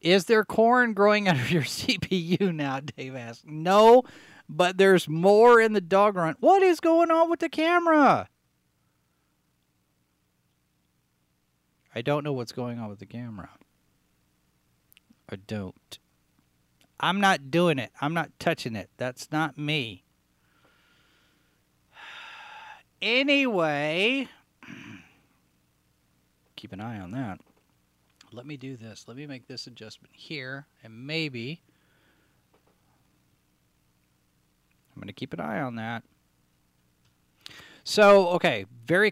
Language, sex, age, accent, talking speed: English, male, 40-59, American, 120 wpm